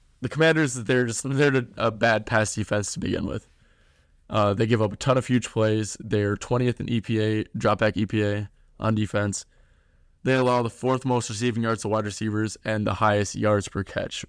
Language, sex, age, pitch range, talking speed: English, male, 20-39, 100-115 Hz, 190 wpm